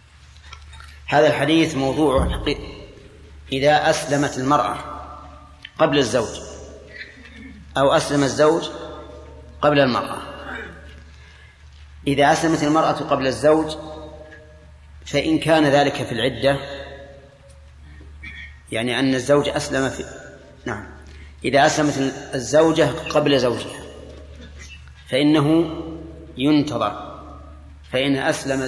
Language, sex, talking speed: Arabic, male, 80 wpm